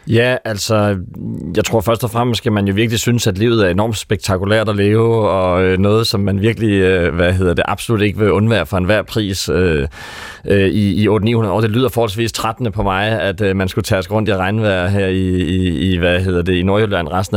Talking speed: 230 wpm